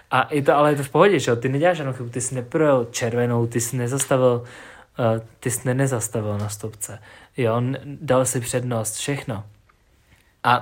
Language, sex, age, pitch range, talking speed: Czech, male, 20-39, 115-130 Hz, 175 wpm